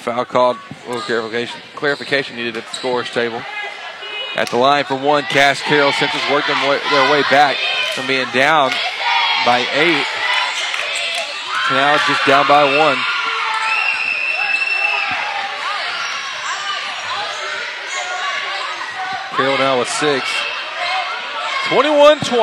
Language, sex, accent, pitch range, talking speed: English, male, American, 140-165 Hz, 100 wpm